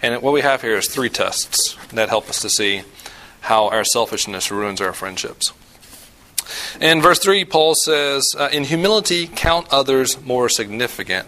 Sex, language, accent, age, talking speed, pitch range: male, English, American, 40-59, 160 wpm, 110-150 Hz